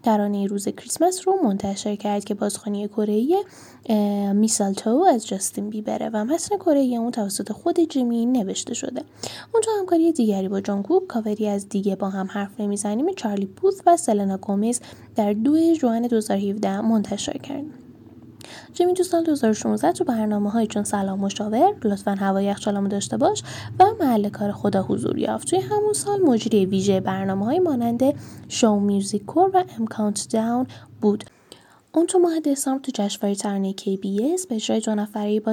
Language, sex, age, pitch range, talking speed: Persian, female, 10-29, 205-295 Hz, 155 wpm